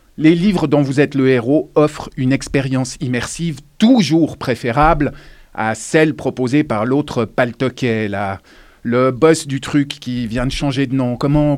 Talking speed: 160 wpm